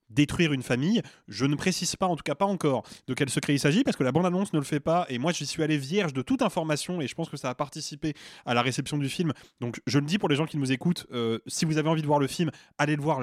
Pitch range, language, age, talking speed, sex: 135-175 Hz, French, 20-39, 310 wpm, male